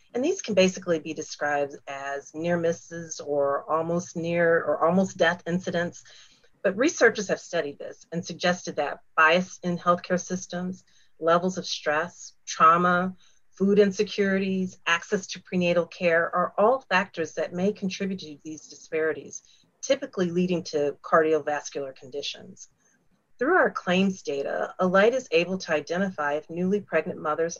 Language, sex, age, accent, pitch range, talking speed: English, female, 40-59, American, 155-185 Hz, 140 wpm